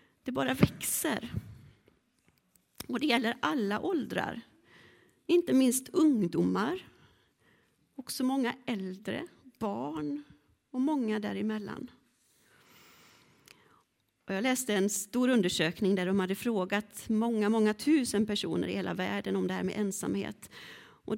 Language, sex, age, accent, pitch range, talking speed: Swedish, female, 40-59, native, 195-255 Hz, 115 wpm